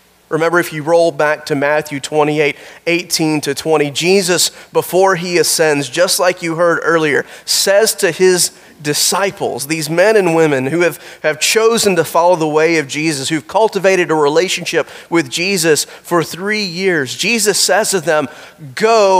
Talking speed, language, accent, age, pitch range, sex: 165 wpm, English, American, 30-49, 155-205 Hz, male